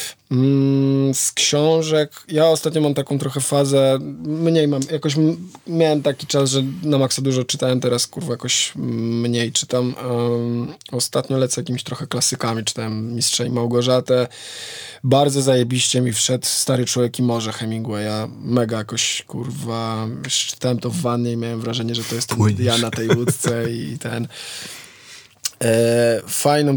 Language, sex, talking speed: Polish, male, 150 wpm